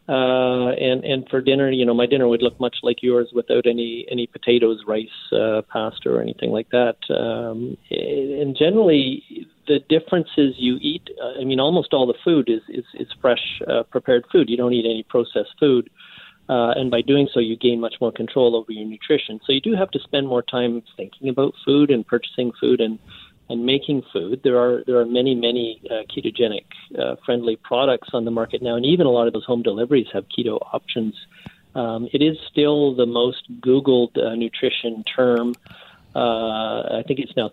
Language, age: English, 40-59